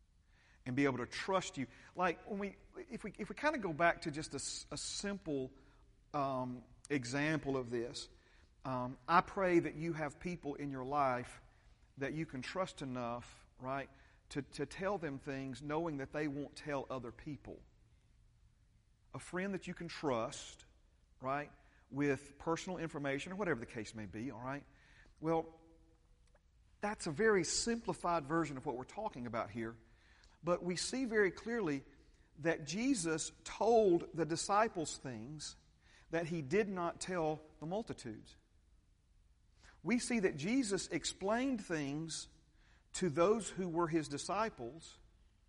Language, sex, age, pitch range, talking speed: English, male, 40-59, 130-175 Hz, 150 wpm